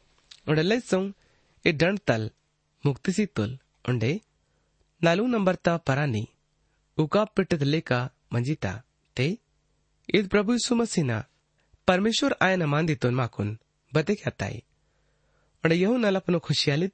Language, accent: Hindi, native